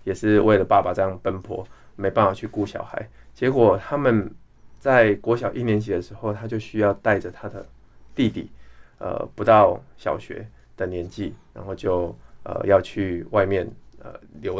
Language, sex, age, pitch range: Chinese, male, 20-39, 100-120 Hz